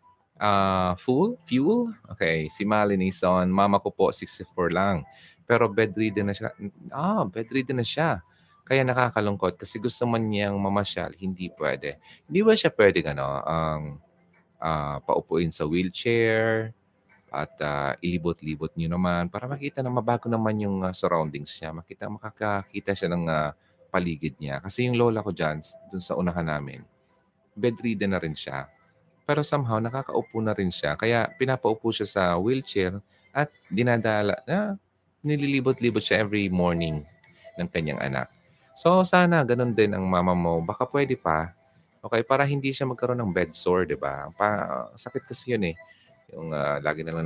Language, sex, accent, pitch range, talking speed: Filipino, male, native, 85-125 Hz, 155 wpm